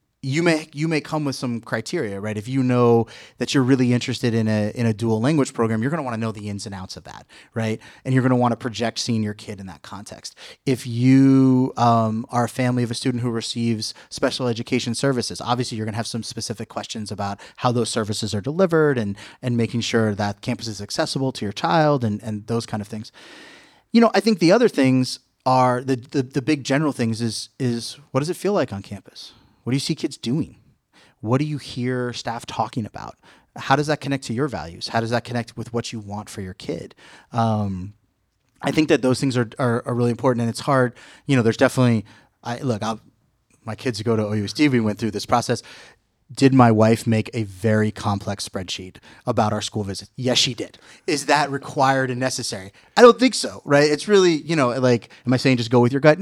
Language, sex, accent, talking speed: English, male, American, 230 wpm